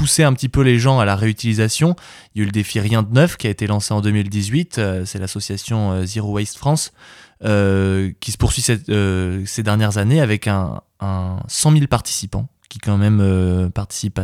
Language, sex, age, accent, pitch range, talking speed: French, male, 20-39, French, 100-130 Hz, 210 wpm